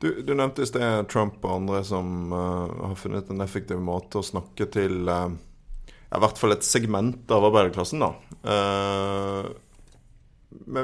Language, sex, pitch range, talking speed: English, male, 90-105 Hz, 155 wpm